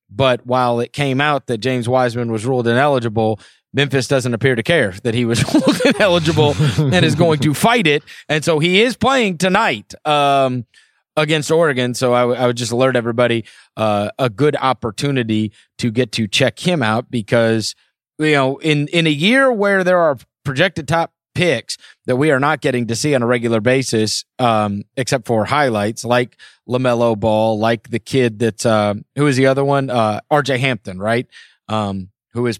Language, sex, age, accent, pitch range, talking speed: English, male, 30-49, American, 115-150 Hz, 185 wpm